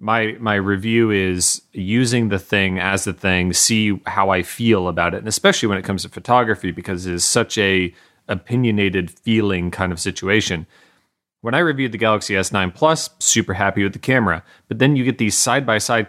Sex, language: male, English